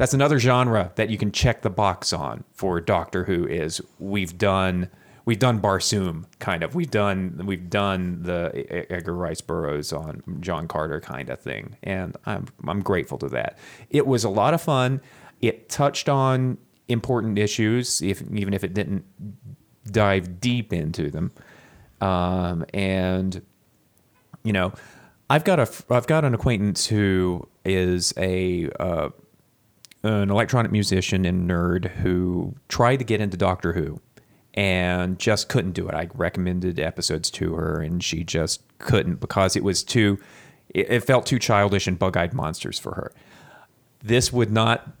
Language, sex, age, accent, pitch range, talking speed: English, male, 30-49, American, 90-120 Hz, 155 wpm